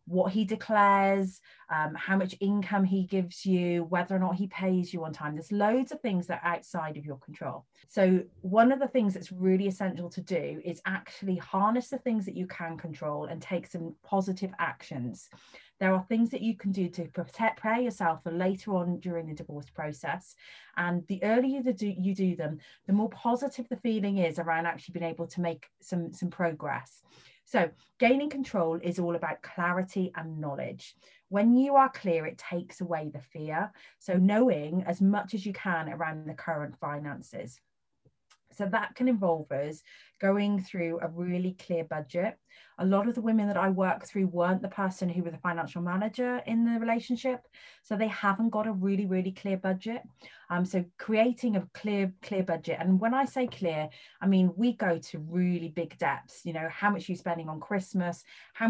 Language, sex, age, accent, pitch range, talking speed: English, female, 30-49, British, 165-205 Hz, 195 wpm